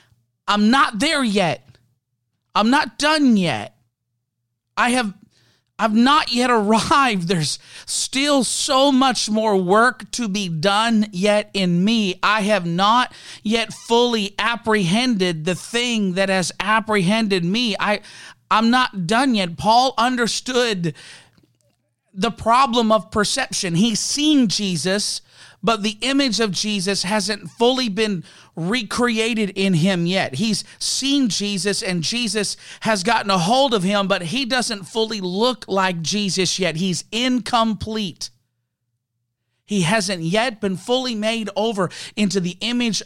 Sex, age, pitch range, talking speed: male, 40-59, 170-230 Hz, 130 wpm